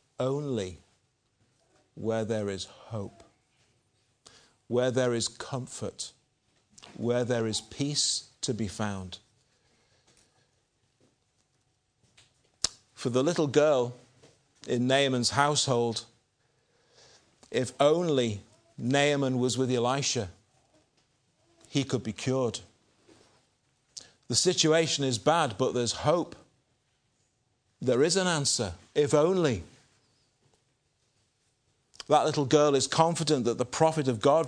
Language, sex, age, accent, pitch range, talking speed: English, male, 50-69, British, 120-145 Hz, 95 wpm